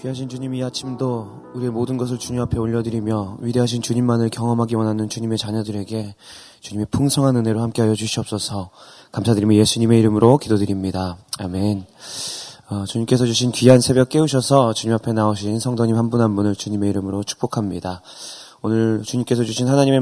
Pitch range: 110-130 Hz